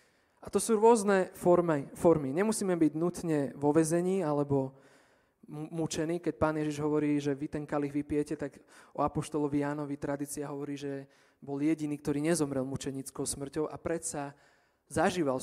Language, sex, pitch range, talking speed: Slovak, male, 145-165 Hz, 145 wpm